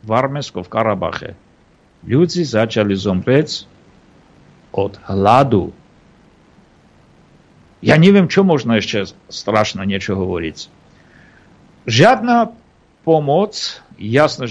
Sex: male